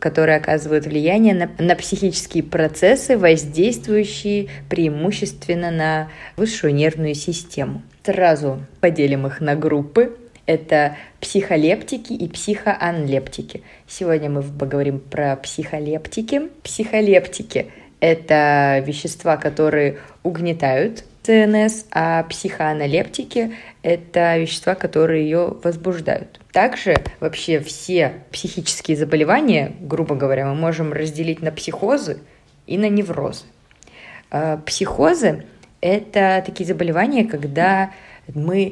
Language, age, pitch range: Russian, 20-39, 155-190 Hz